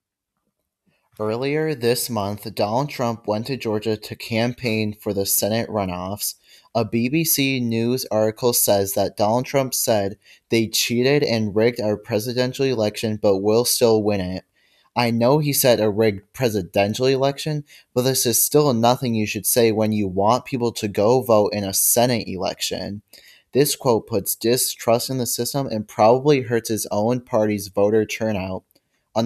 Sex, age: male, 20-39